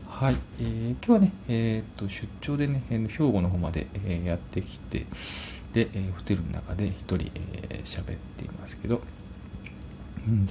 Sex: male